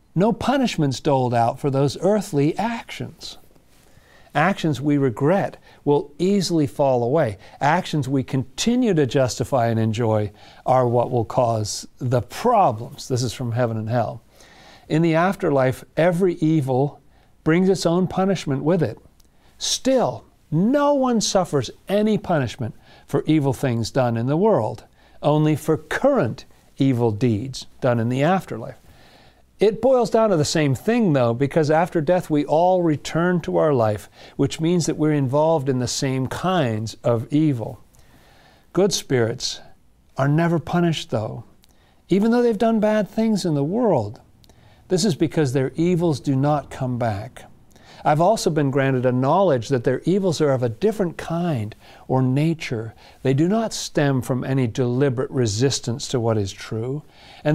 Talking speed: 155 wpm